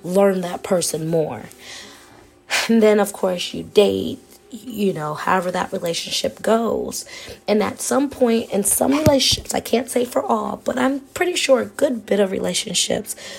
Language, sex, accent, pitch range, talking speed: English, female, American, 200-255 Hz, 165 wpm